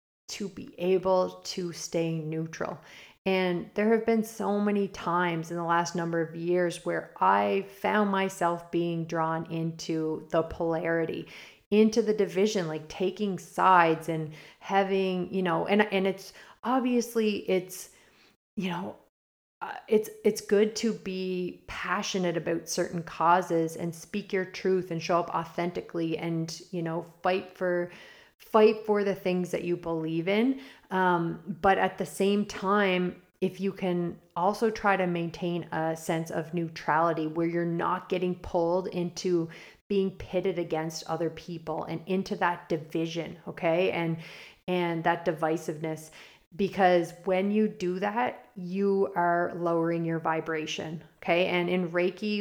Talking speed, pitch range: 145 wpm, 165-195 Hz